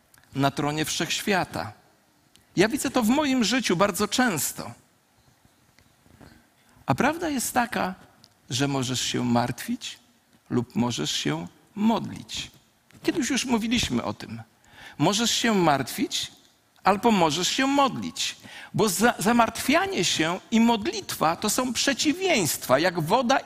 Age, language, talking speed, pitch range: 50-69, Polish, 115 wpm, 140-235 Hz